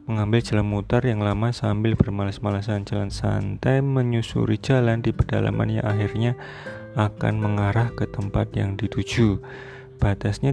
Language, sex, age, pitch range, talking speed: Indonesian, male, 30-49, 105-120 Hz, 125 wpm